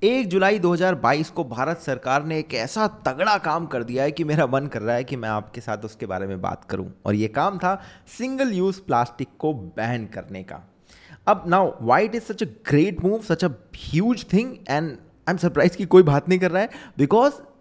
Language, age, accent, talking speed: Hindi, 20-39, native, 215 wpm